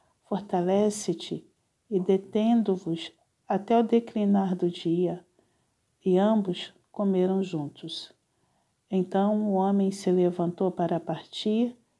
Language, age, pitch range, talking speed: Portuguese, 50-69, 180-210 Hz, 95 wpm